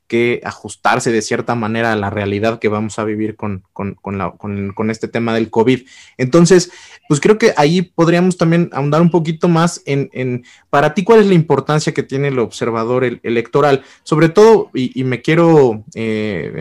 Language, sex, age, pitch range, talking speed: Spanish, male, 30-49, 115-155 Hz, 175 wpm